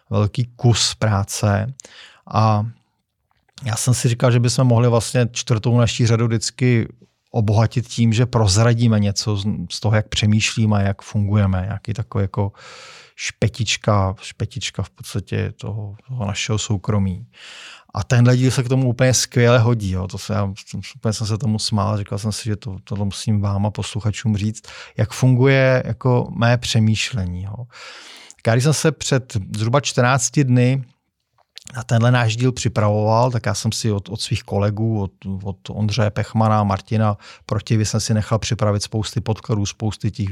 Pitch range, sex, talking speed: 105-120 Hz, male, 160 wpm